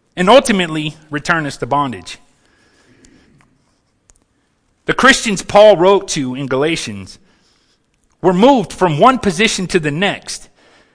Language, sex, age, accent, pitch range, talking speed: English, male, 30-49, American, 145-200 Hz, 115 wpm